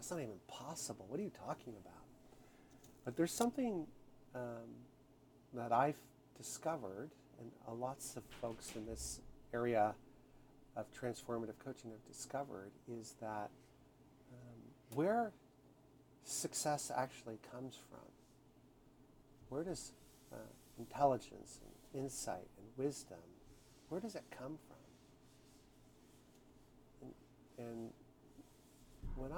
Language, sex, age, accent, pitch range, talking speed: English, male, 50-69, American, 105-130 Hz, 105 wpm